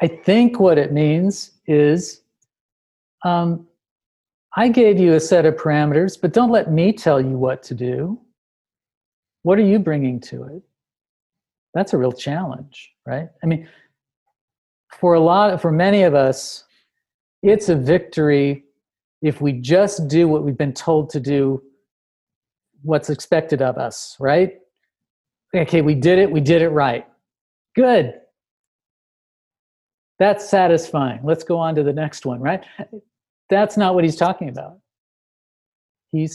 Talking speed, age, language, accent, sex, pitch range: 145 wpm, 50-69, English, American, male, 140-185 Hz